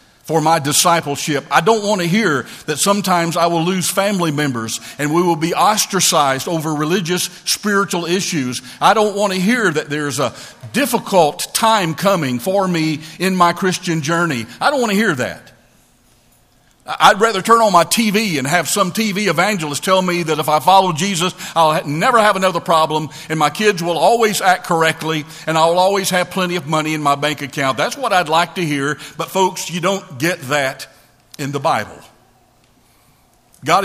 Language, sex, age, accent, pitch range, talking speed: English, male, 50-69, American, 150-195 Hz, 185 wpm